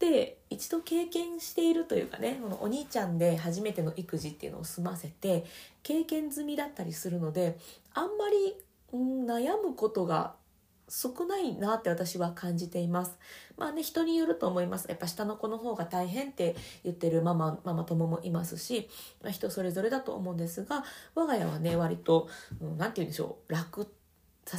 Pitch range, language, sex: 170-270 Hz, Japanese, female